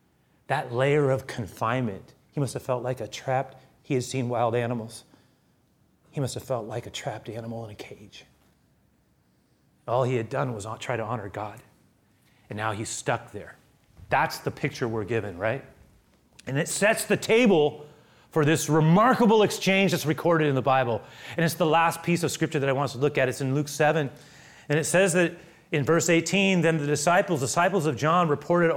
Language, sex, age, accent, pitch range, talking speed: English, male, 30-49, American, 135-200 Hz, 195 wpm